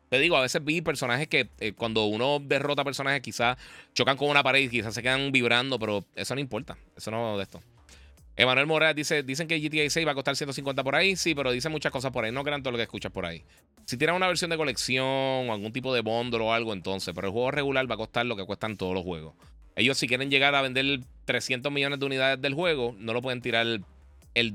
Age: 20-39